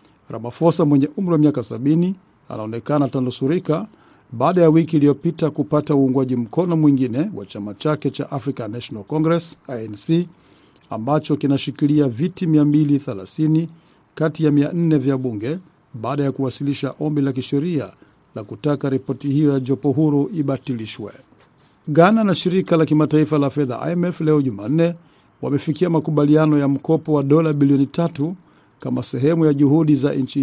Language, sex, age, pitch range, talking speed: Swahili, male, 50-69, 135-160 Hz, 140 wpm